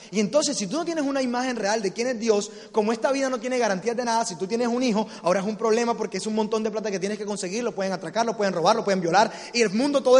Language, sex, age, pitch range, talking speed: Spanish, male, 20-39, 205-245 Hz, 310 wpm